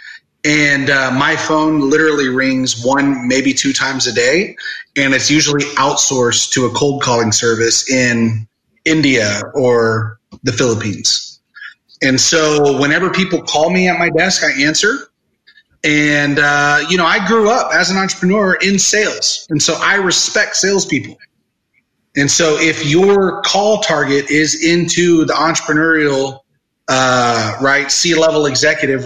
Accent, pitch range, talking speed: American, 130-170 Hz, 140 wpm